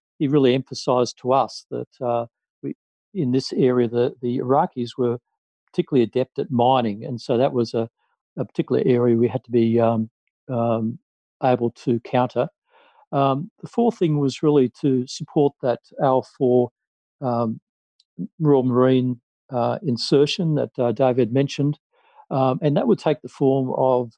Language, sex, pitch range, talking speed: English, male, 120-145 Hz, 155 wpm